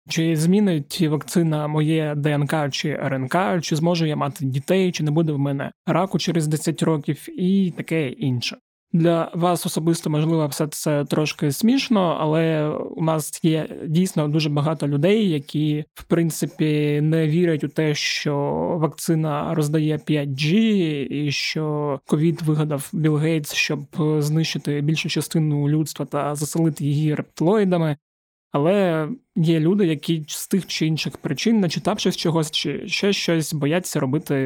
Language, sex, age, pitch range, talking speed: Ukrainian, male, 20-39, 145-170 Hz, 145 wpm